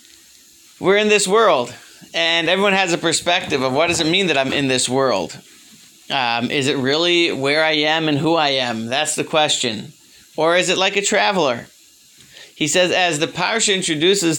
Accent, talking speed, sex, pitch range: American, 190 wpm, male, 135-170 Hz